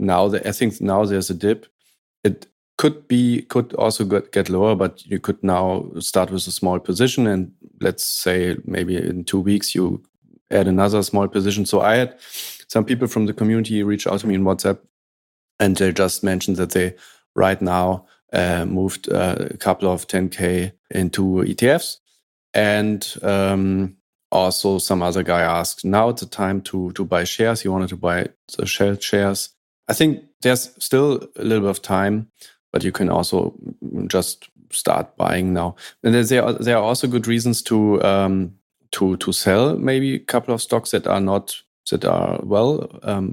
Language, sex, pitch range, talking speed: English, male, 95-110 Hz, 180 wpm